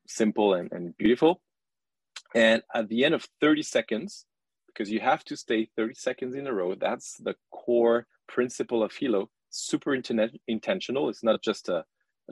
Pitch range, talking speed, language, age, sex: 110-130 Hz, 170 wpm, English, 30-49, male